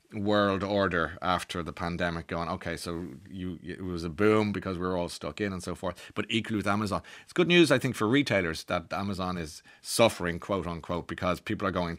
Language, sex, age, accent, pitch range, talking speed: English, male, 30-49, Irish, 95-130 Hz, 215 wpm